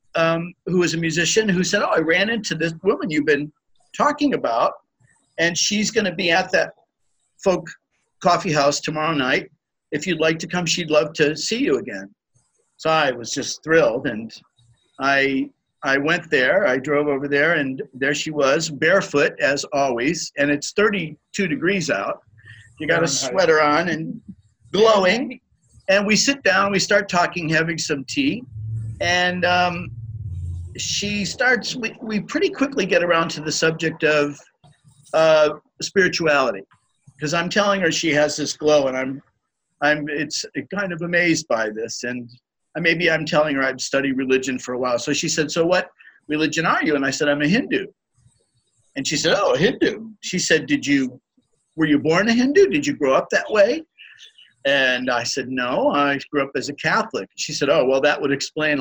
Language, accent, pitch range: English, American, 140-185 Hz